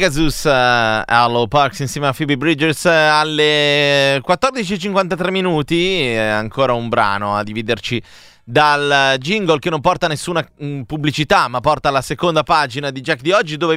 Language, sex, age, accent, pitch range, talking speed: Italian, male, 30-49, native, 120-160 Hz, 155 wpm